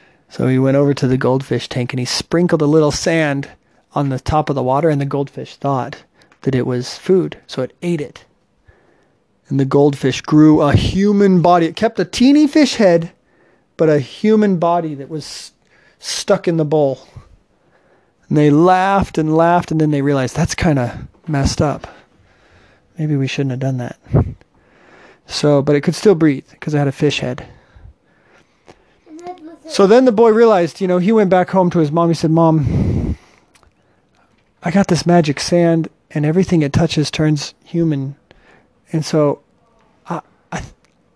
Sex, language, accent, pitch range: male, English, American, 140-175 Hz